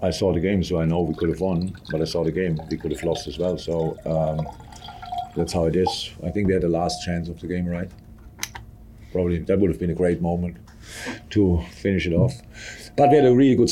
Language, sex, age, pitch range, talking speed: English, male, 50-69, 85-100 Hz, 250 wpm